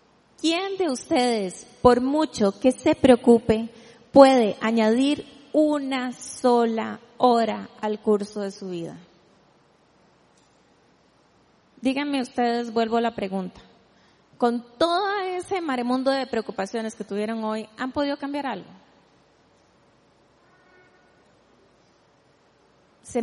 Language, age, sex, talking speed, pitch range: Spanish, 30-49, female, 100 wpm, 220-275 Hz